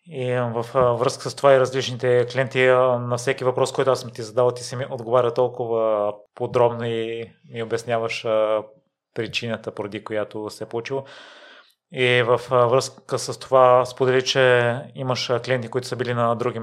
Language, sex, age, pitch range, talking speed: Bulgarian, male, 30-49, 115-125 Hz, 160 wpm